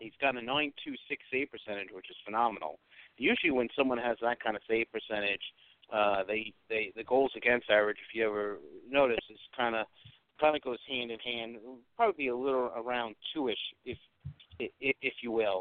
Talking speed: 190 wpm